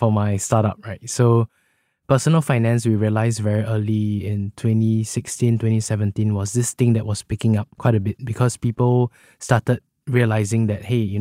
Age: 20-39